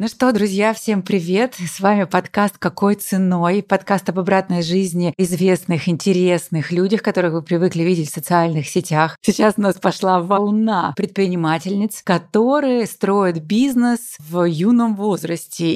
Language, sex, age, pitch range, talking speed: Russian, female, 30-49, 175-210 Hz, 135 wpm